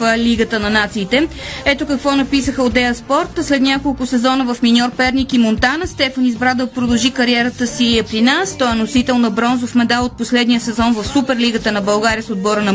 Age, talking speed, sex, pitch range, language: 20-39, 200 wpm, female, 240-275 Hz, Bulgarian